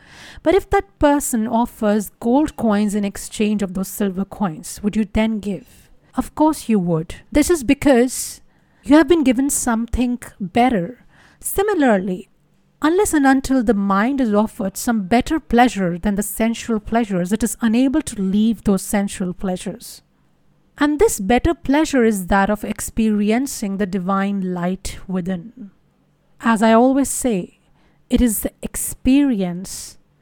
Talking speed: 145 wpm